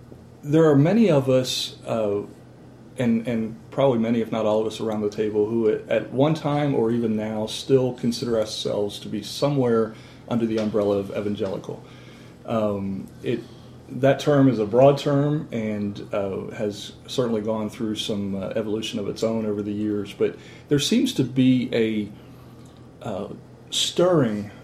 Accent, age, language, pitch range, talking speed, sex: American, 40-59, English, 110-130 Hz, 165 wpm, male